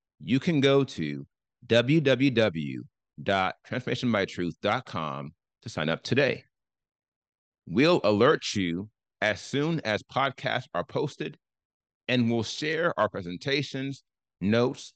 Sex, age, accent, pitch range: male, 30-49, American, 110-145 Hz